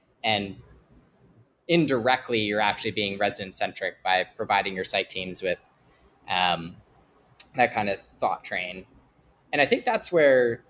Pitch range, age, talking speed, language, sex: 105-125 Hz, 20-39, 135 wpm, English, male